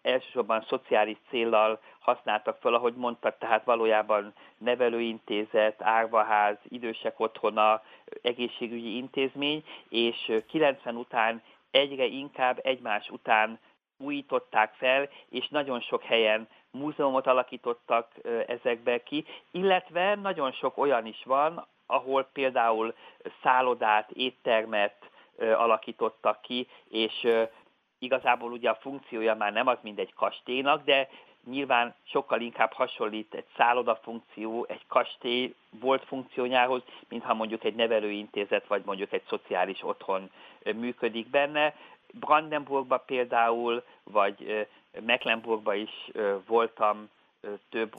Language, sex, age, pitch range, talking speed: Hungarian, male, 30-49, 110-135 Hz, 105 wpm